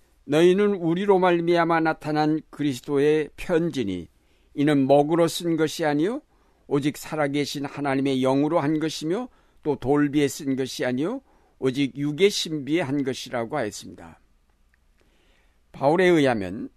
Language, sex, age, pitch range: Korean, male, 60-79, 100-165 Hz